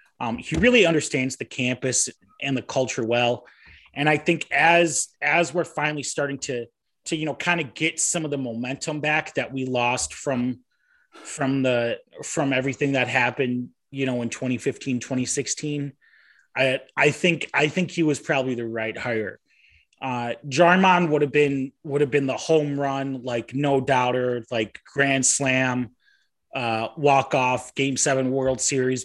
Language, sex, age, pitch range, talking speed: English, male, 30-49, 120-150 Hz, 165 wpm